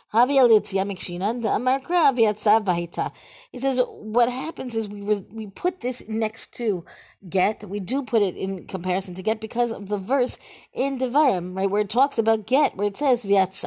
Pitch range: 195-245 Hz